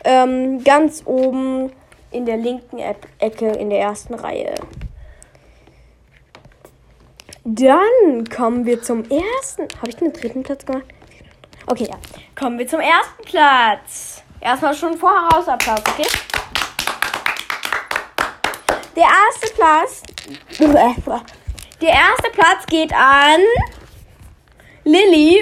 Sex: female